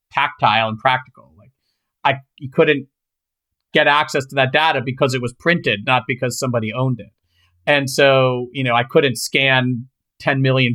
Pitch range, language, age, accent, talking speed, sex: 125-150 Hz, English, 40-59, American, 165 wpm, male